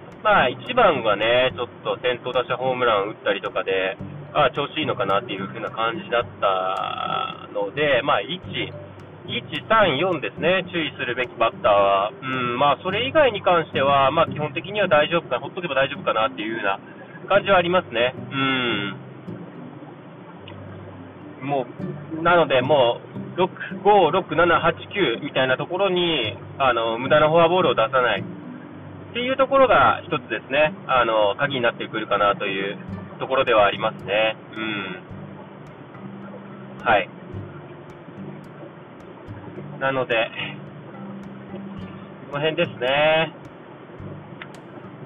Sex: male